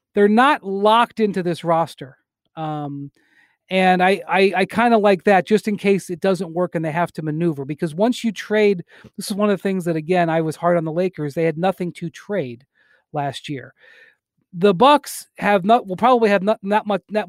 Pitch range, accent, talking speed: 160-200 Hz, American, 215 wpm